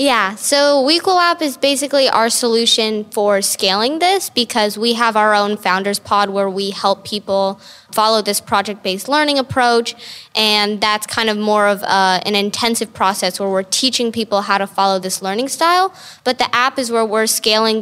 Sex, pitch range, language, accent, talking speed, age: female, 200-240 Hz, English, American, 180 wpm, 10-29